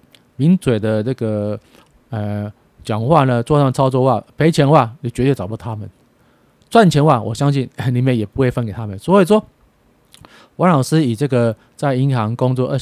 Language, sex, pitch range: Chinese, male, 110-140 Hz